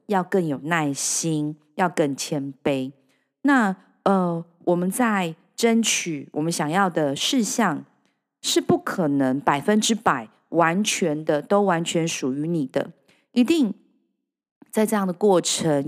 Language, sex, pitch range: Chinese, female, 155-210 Hz